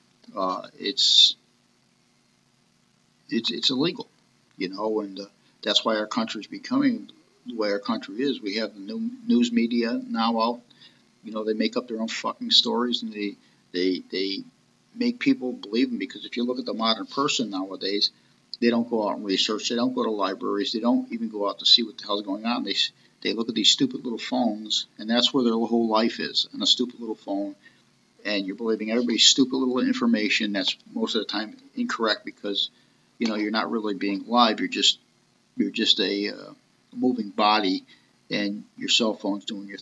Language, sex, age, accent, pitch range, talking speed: English, male, 50-69, American, 105-130 Hz, 200 wpm